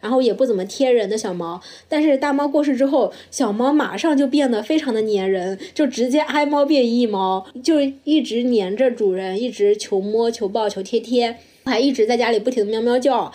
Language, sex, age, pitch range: Chinese, female, 20-39, 225-290 Hz